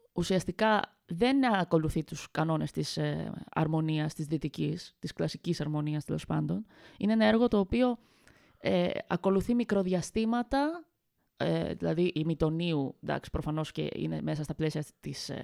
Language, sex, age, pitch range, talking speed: Greek, female, 20-39, 165-215 Hz, 135 wpm